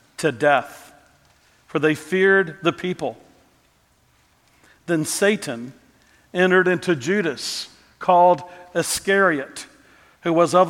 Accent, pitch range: American, 160-190 Hz